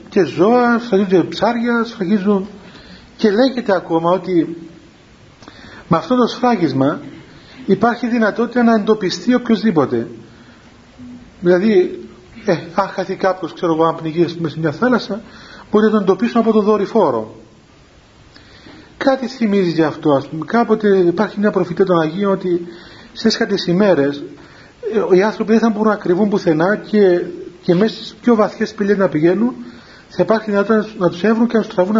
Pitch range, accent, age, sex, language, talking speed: 180-230 Hz, native, 40-59, male, Greek, 150 wpm